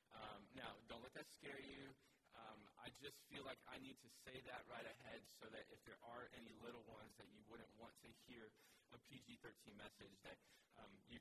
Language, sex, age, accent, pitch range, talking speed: English, male, 20-39, American, 110-125 Hz, 210 wpm